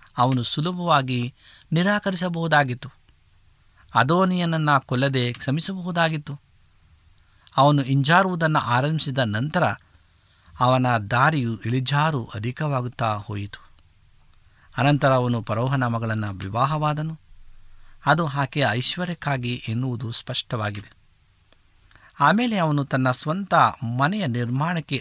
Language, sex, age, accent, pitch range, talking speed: Kannada, male, 50-69, native, 110-145 Hz, 75 wpm